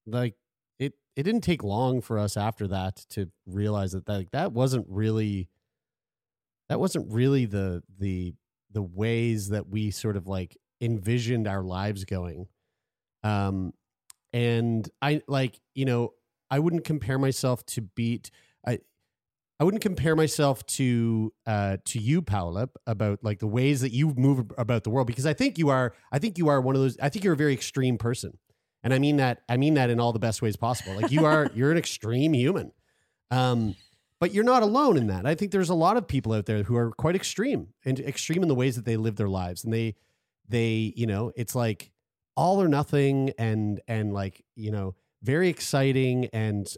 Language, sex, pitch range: English, male, 105-145 Hz